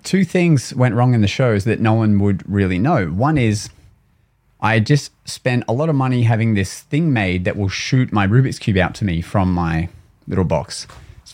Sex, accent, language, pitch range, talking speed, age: male, Australian, English, 100-125 Hz, 210 wpm, 30-49